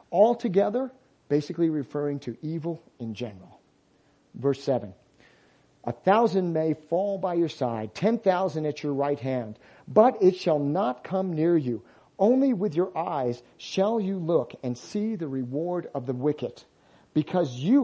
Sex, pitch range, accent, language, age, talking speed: male, 135-190 Hz, American, English, 50-69, 150 wpm